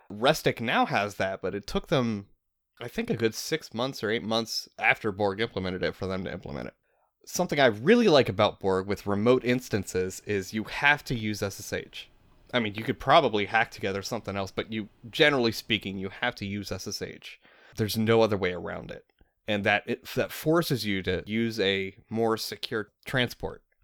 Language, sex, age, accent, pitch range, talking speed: English, male, 20-39, American, 100-125 Hz, 195 wpm